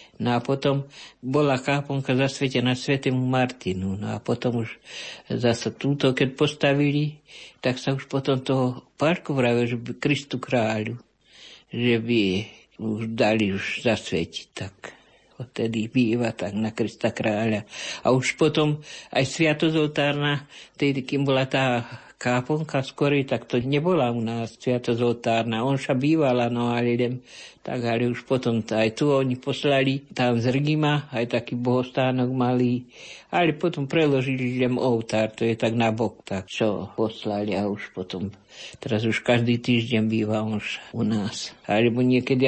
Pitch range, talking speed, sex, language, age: 115-140 Hz, 145 wpm, male, Slovak, 60-79